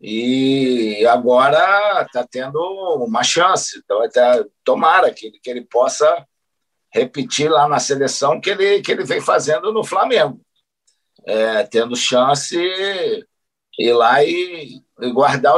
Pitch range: 140-220 Hz